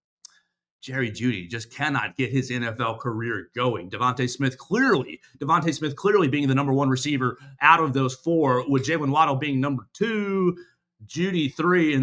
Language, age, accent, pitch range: English, 30-49, American, 130-180 Hz